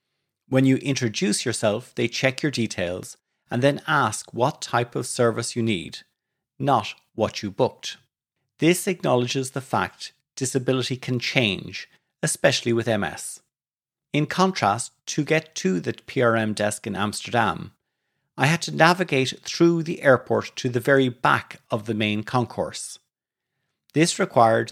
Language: English